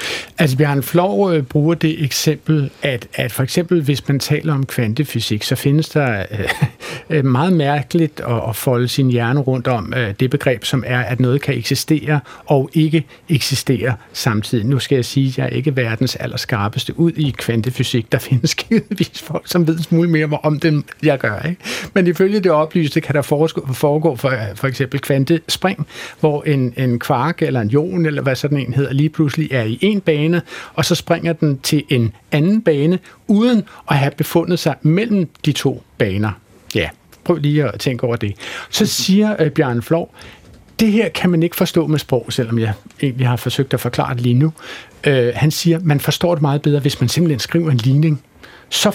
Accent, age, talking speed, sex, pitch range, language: native, 60-79, 190 wpm, male, 125-160 Hz, Danish